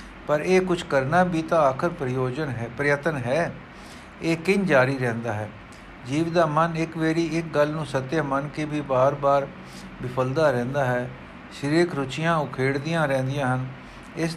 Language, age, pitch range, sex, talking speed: Punjabi, 60-79, 130-155 Hz, male, 165 wpm